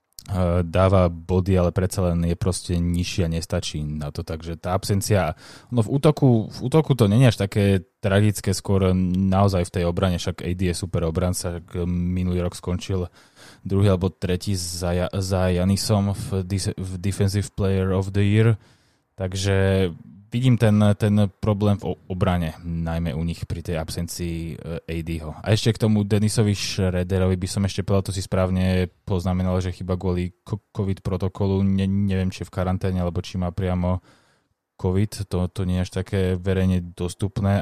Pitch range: 90-100 Hz